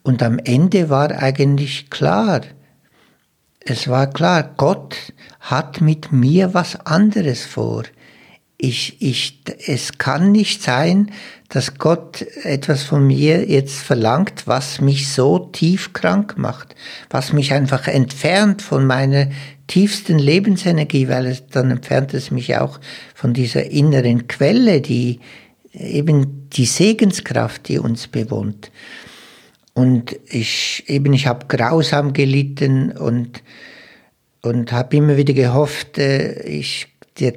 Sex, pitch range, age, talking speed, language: male, 130-155 Hz, 60-79, 120 wpm, German